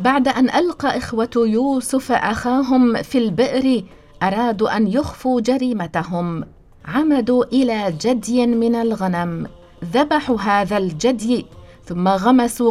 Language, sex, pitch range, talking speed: English, female, 195-260 Hz, 105 wpm